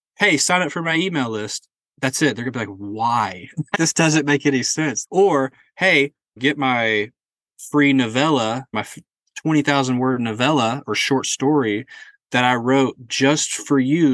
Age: 20-39